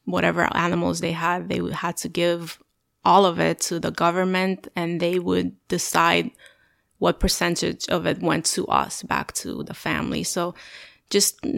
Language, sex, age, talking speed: English, female, 20-39, 160 wpm